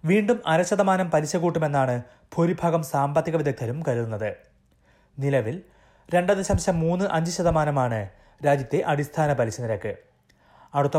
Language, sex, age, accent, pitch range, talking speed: Malayalam, male, 30-49, native, 125-165 Hz, 105 wpm